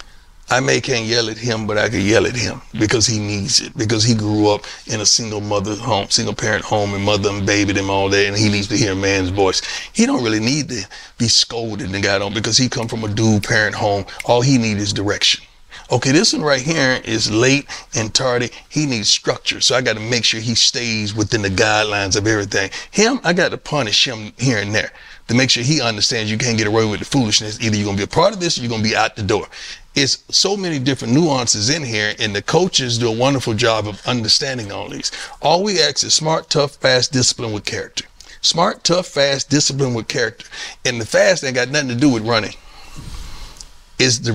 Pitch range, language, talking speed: 105-130 Hz, English, 235 wpm